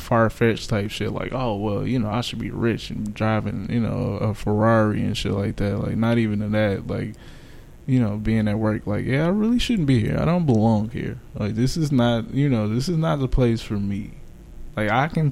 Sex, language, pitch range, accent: male, English, 105-125 Hz, American